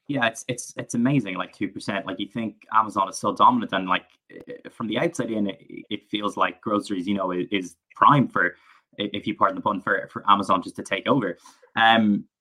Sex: male